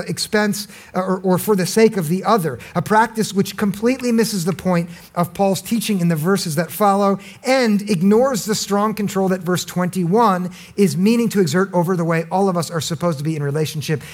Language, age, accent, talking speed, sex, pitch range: English, 50-69, American, 205 wpm, male, 165-210 Hz